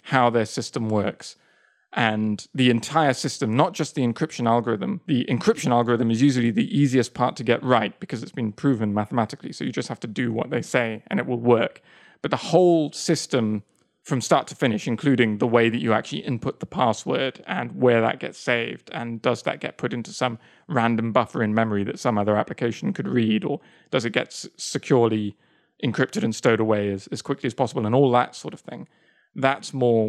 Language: English